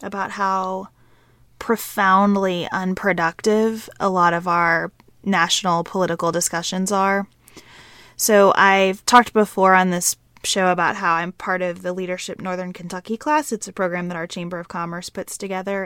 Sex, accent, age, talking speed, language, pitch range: female, American, 20-39, 150 wpm, English, 175-210 Hz